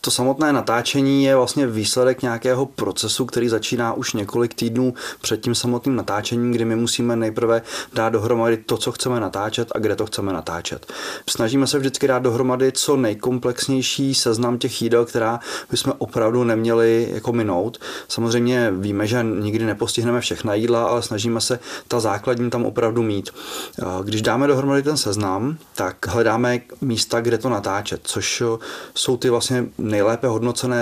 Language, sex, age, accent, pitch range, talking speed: Czech, male, 30-49, native, 110-125 Hz, 155 wpm